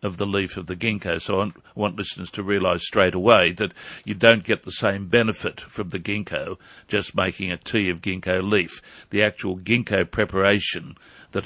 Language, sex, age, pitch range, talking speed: English, male, 60-79, 95-115 Hz, 190 wpm